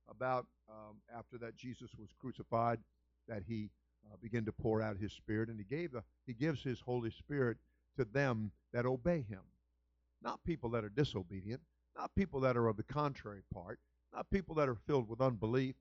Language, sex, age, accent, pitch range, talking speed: English, male, 50-69, American, 115-150 Hz, 190 wpm